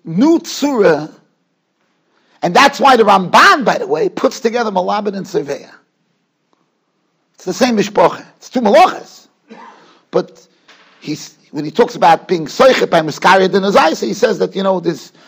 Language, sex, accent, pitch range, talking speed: English, male, American, 195-270 Hz, 155 wpm